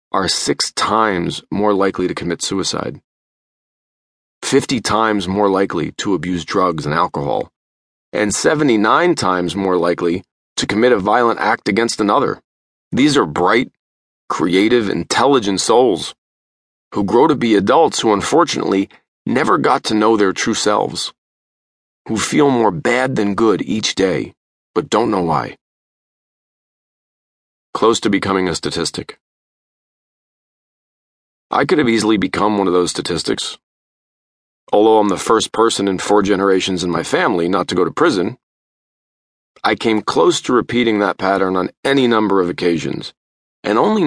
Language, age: English, 30-49